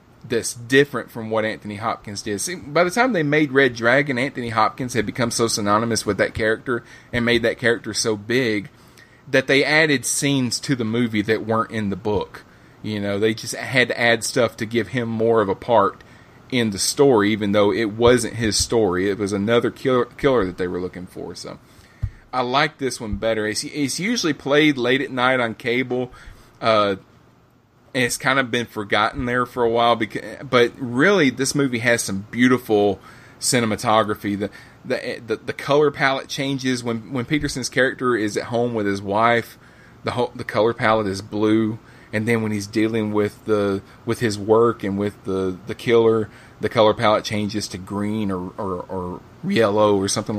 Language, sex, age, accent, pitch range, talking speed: English, male, 30-49, American, 105-125 Hz, 190 wpm